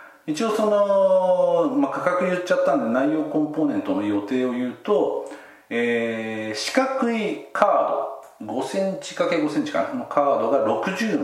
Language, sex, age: Japanese, male, 40-59